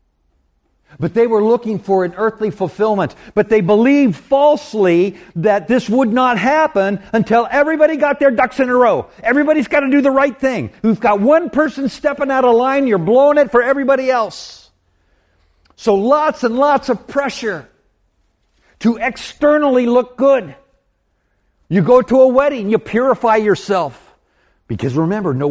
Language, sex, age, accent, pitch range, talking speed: English, male, 60-79, American, 180-255 Hz, 160 wpm